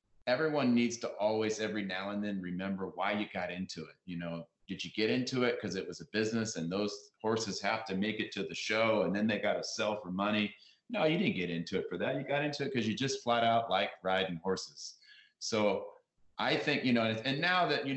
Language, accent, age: English, American, 30-49